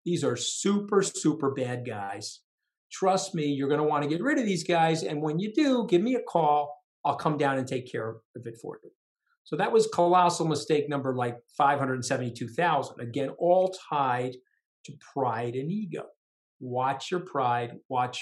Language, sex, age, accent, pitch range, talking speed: English, male, 50-69, American, 125-170 Hz, 180 wpm